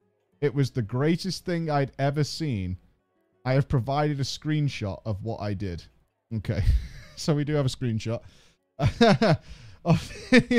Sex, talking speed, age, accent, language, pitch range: male, 145 wpm, 30-49, British, English, 120-195 Hz